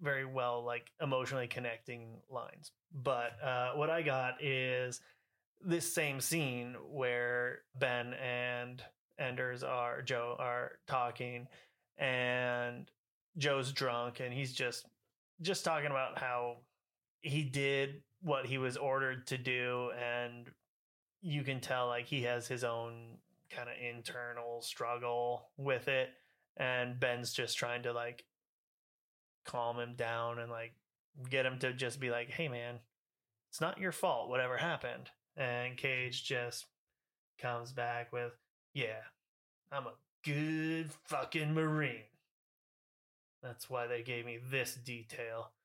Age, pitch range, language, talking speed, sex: 30-49, 120-140 Hz, English, 130 wpm, male